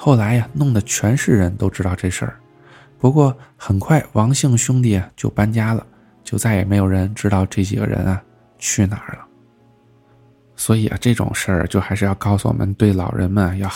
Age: 20-39